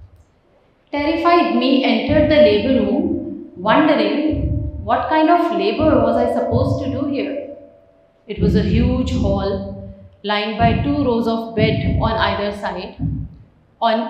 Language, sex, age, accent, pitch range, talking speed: English, female, 30-49, Indian, 205-265 Hz, 135 wpm